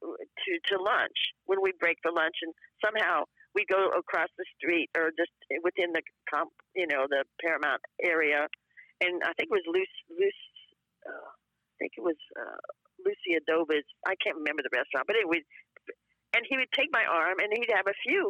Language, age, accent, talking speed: English, 50-69, American, 190 wpm